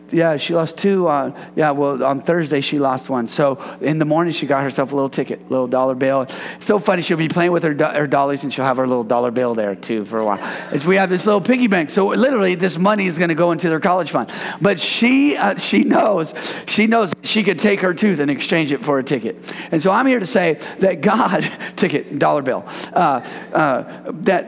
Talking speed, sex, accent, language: 245 wpm, male, American, English